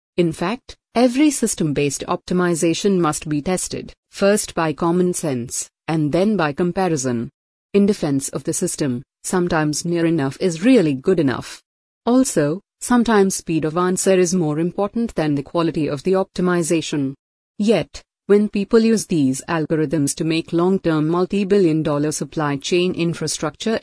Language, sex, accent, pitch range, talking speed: English, female, Indian, 155-195 Hz, 140 wpm